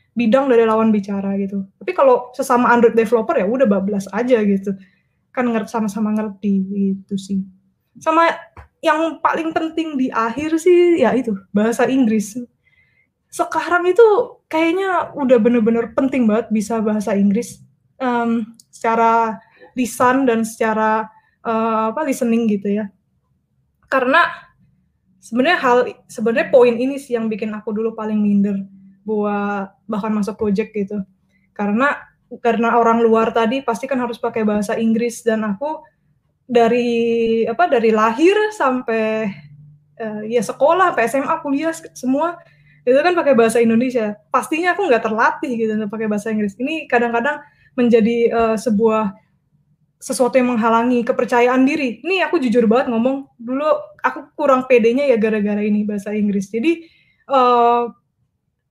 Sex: female